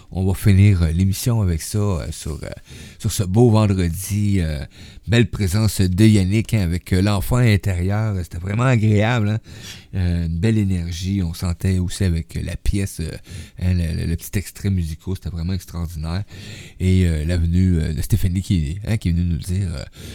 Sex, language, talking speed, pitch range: male, French, 195 wpm, 85-105 Hz